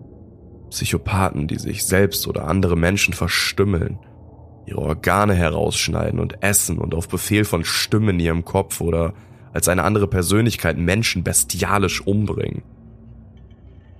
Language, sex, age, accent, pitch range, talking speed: German, male, 20-39, German, 90-105 Hz, 125 wpm